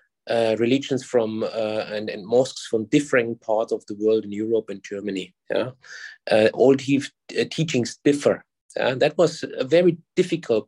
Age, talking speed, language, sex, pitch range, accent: 30-49, 170 wpm, English, male, 115-140 Hz, German